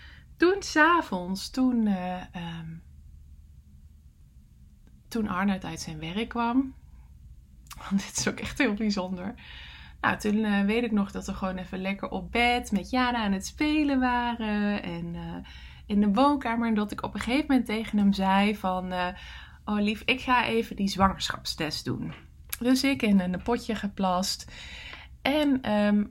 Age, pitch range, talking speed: 20-39, 185-240 Hz, 155 wpm